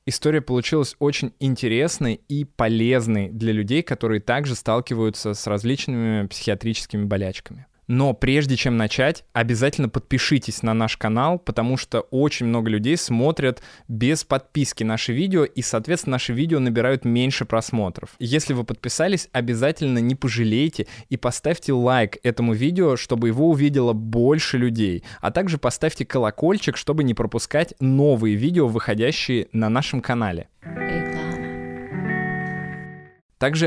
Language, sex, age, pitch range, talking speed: Russian, male, 20-39, 115-140 Hz, 125 wpm